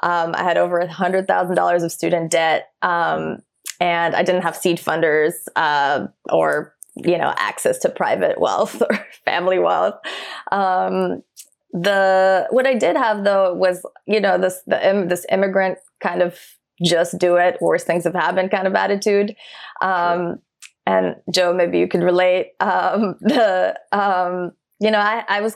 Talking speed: 165 wpm